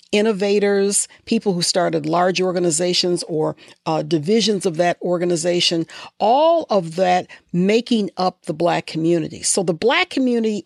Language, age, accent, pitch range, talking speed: English, 50-69, American, 175-220 Hz, 135 wpm